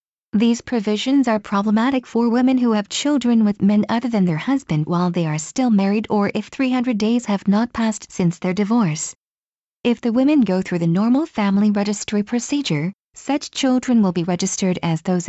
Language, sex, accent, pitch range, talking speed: English, female, American, 190-235 Hz, 185 wpm